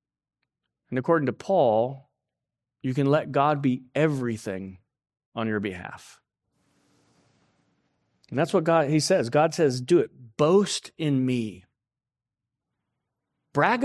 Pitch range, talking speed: 130-190 Hz, 115 wpm